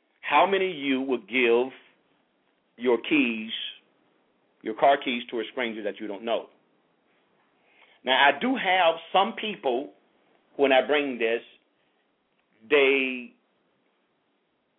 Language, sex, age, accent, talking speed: English, male, 50-69, American, 120 wpm